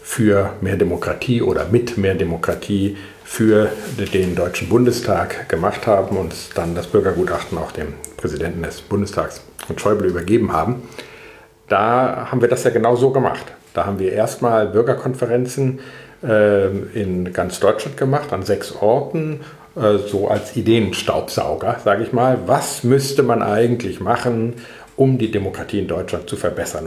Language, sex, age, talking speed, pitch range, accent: German, male, 50-69, 145 wpm, 100-125 Hz, German